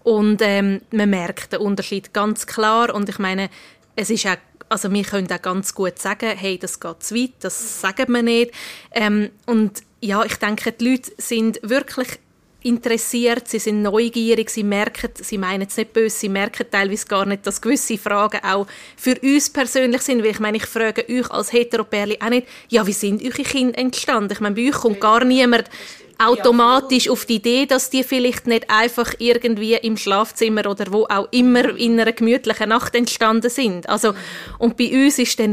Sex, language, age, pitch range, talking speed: female, German, 20-39, 210-250 Hz, 195 wpm